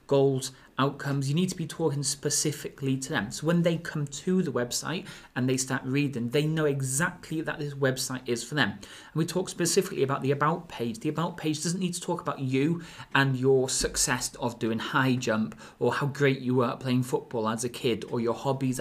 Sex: male